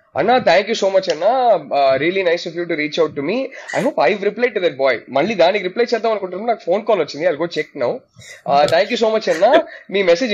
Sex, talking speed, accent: male, 215 wpm, native